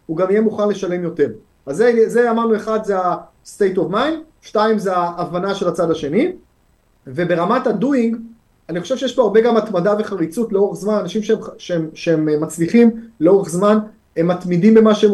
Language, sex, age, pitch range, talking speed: Hebrew, male, 30-49, 175-225 Hz, 175 wpm